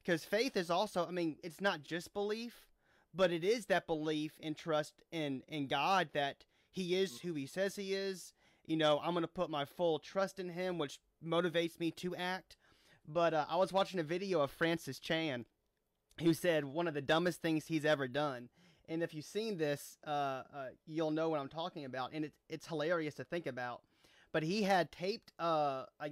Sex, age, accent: male, 30-49, American